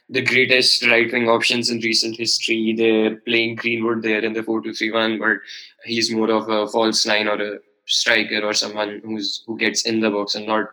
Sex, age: male, 10-29